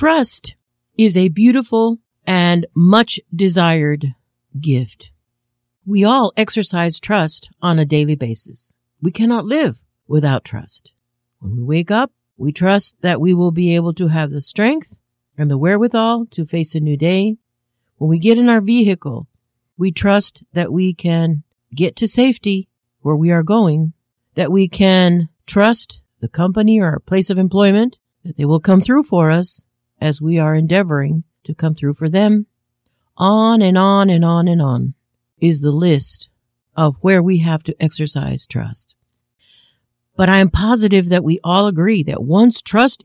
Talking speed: 160 wpm